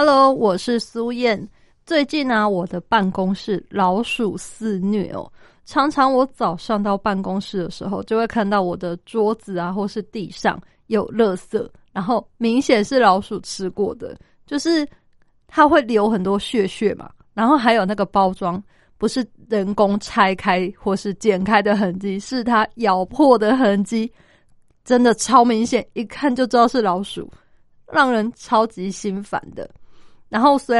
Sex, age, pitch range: female, 20-39, 200-245 Hz